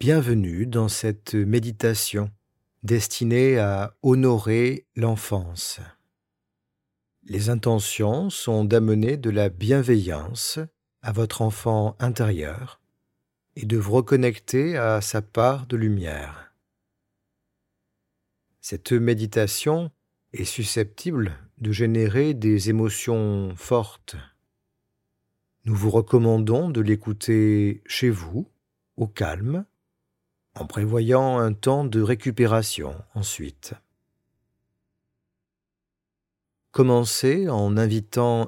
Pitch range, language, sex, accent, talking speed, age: 105-120 Hz, French, male, French, 85 wpm, 40-59